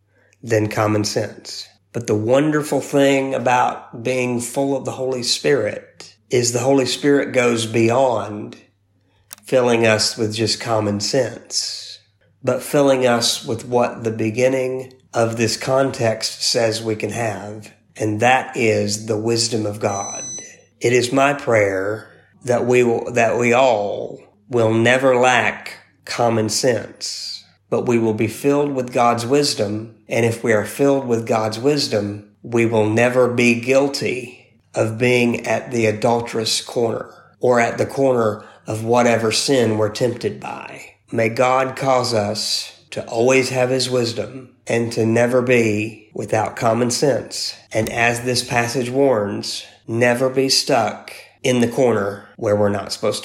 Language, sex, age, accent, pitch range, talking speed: English, male, 50-69, American, 110-130 Hz, 145 wpm